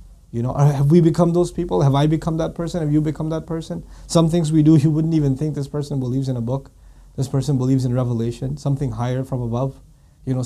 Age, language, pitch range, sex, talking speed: 30-49, English, 130-160 Hz, male, 240 wpm